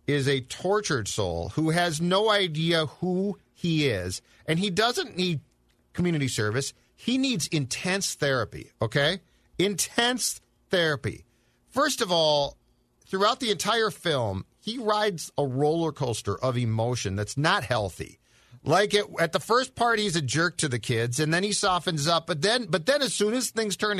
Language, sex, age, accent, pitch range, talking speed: English, male, 50-69, American, 135-200 Hz, 170 wpm